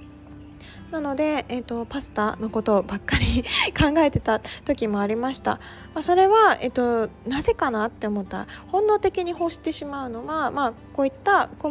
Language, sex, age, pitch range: Japanese, female, 20-39, 210-295 Hz